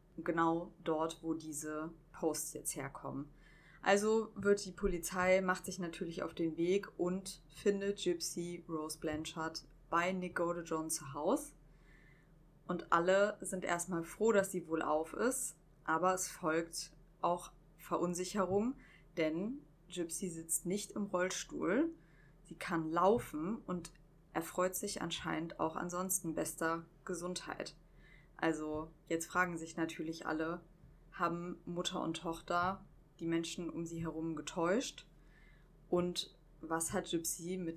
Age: 20-39